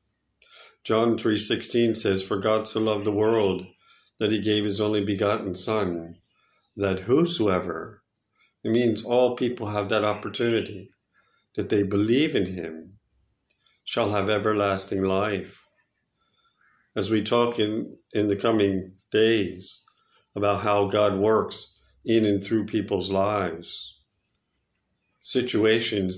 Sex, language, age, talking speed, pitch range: male, English, 50-69, 120 wpm, 95-110 Hz